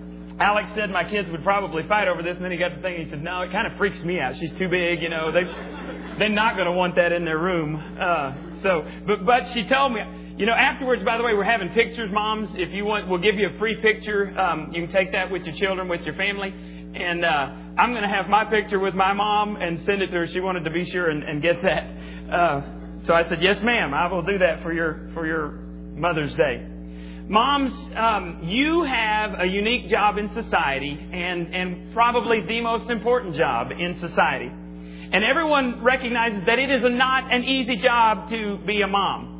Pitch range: 165-225 Hz